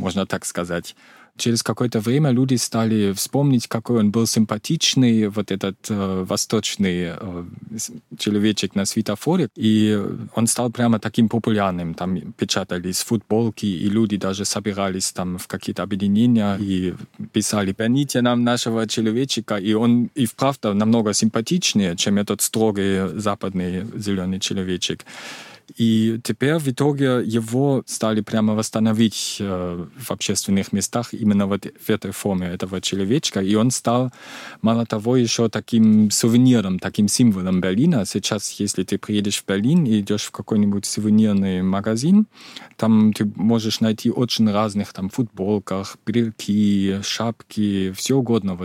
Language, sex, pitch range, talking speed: Russian, male, 95-115 Hz, 130 wpm